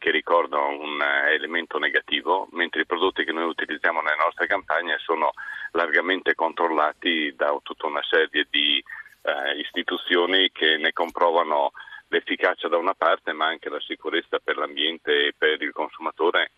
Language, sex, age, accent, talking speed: Italian, male, 40-59, native, 150 wpm